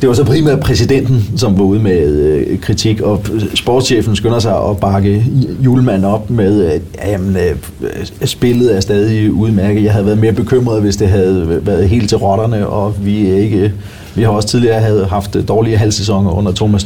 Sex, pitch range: male, 100-135 Hz